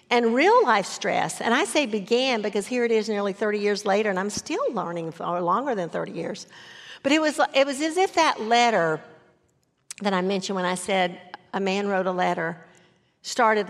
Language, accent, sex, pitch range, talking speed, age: English, American, female, 185-245 Hz, 200 wpm, 50-69